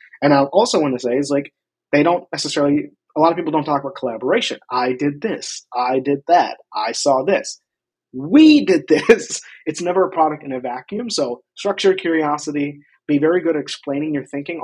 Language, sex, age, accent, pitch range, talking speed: English, male, 30-49, American, 135-175 Hz, 195 wpm